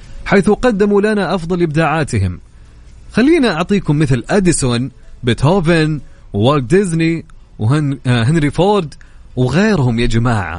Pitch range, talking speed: 110-160 Hz, 100 wpm